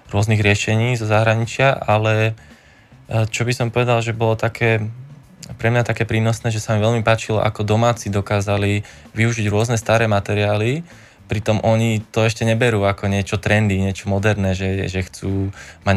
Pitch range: 100-115 Hz